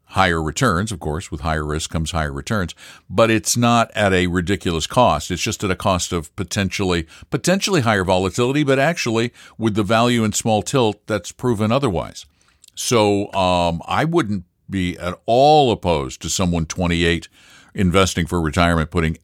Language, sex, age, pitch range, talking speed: English, male, 60-79, 85-110 Hz, 165 wpm